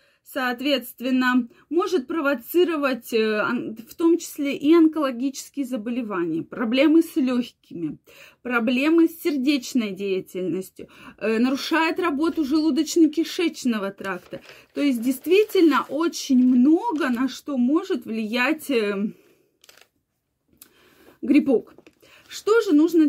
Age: 20-39